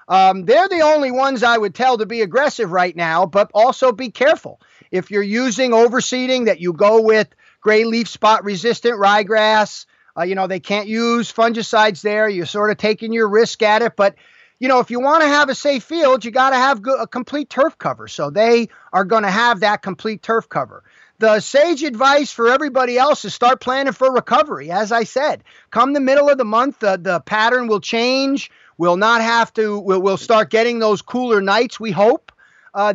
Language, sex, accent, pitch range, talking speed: English, male, American, 210-250 Hz, 205 wpm